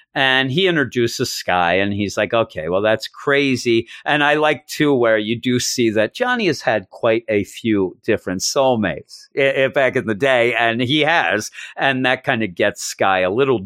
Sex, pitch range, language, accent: male, 100-135 Hz, English, American